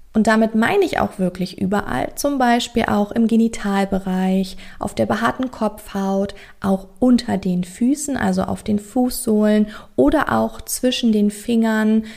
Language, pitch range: German, 190-230 Hz